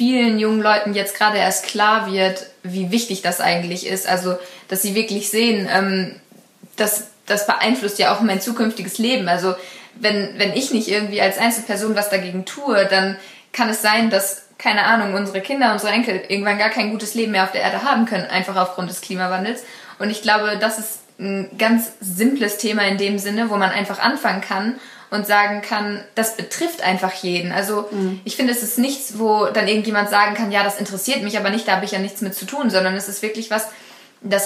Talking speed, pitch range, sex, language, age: 205 wpm, 190-220 Hz, female, German, 20-39